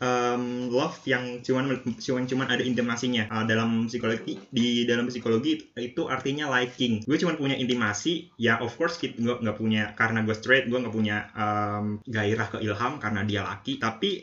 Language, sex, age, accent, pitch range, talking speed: Indonesian, male, 20-39, native, 110-130 Hz, 175 wpm